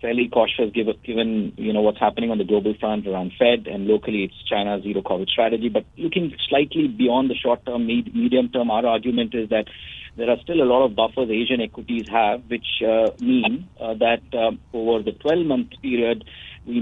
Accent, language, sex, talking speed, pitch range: Indian, English, male, 180 wpm, 105-120 Hz